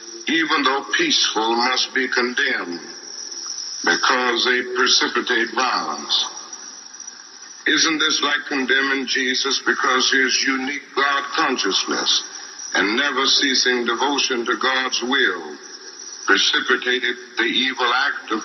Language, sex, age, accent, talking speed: English, male, 60-79, American, 105 wpm